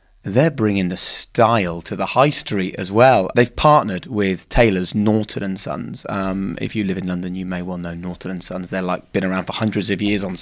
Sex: male